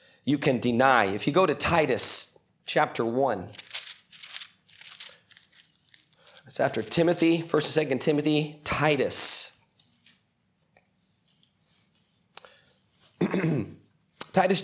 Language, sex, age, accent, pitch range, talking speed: English, male, 30-49, American, 145-185 Hz, 80 wpm